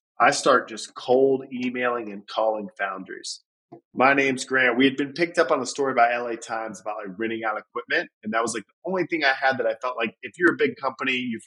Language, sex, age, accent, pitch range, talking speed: English, male, 30-49, American, 105-135 Hz, 240 wpm